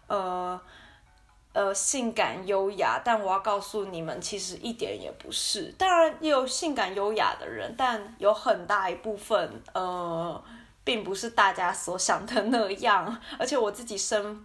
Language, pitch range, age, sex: Chinese, 185-240 Hz, 20-39, female